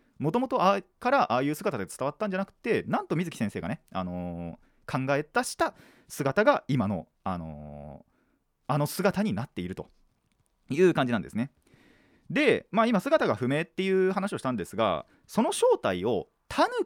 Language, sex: Japanese, male